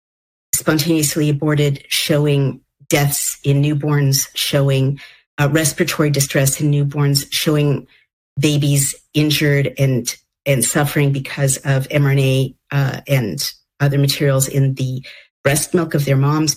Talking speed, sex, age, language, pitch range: 115 wpm, female, 50-69, English, 135-155 Hz